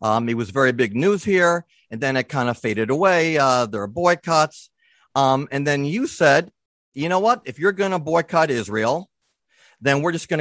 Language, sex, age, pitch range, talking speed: English, male, 40-59, 135-175 Hz, 210 wpm